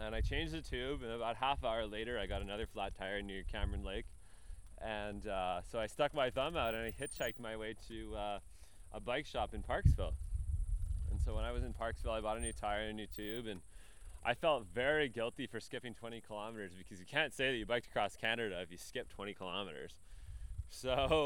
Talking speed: 215 wpm